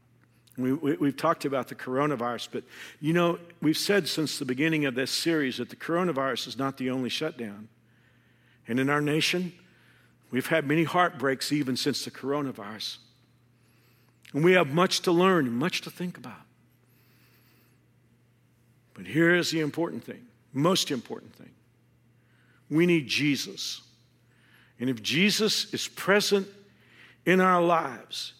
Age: 50-69